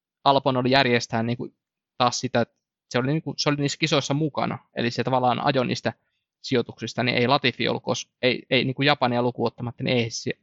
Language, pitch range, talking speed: Finnish, 120-135 Hz, 185 wpm